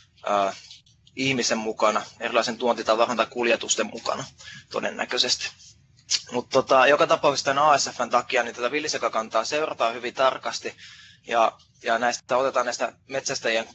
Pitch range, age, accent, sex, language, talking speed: 115-130 Hz, 20-39, native, male, Finnish, 125 wpm